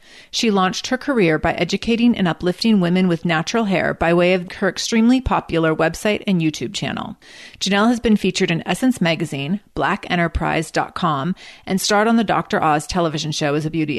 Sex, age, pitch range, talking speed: female, 30-49, 170-220 Hz, 175 wpm